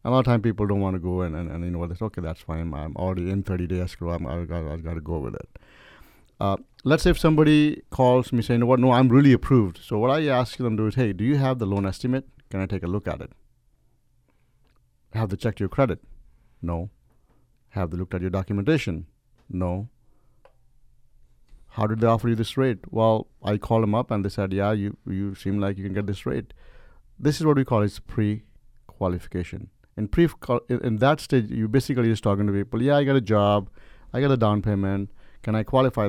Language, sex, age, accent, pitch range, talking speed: English, male, 60-79, Indian, 95-120 Hz, 235 wpm